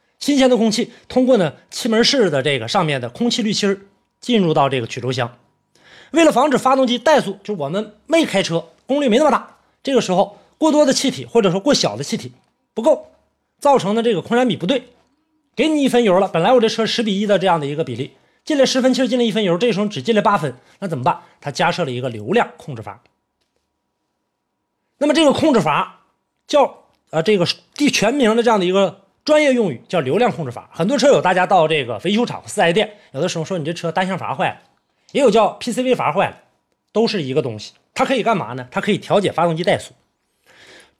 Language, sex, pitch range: Chinese, male, 175-255 Hz